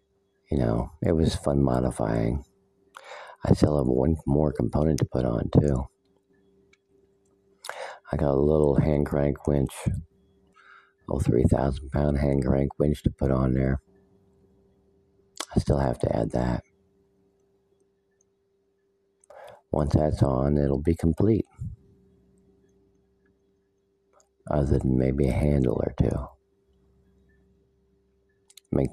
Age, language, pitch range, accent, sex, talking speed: 50-69, English, 70-100 Hz, American, male, 110 wpm